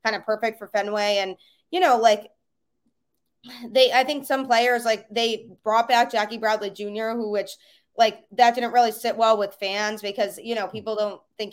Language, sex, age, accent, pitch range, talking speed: English, female, 20-39, American, 200-235 Hz, 195 wpm